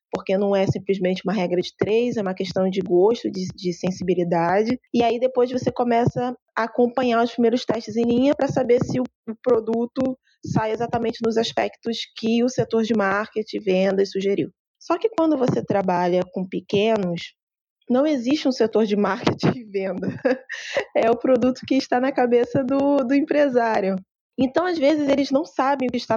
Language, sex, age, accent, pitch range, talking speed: Portuguese, female, 20-39, Brazilian, 195-250 Hz, 180 wpm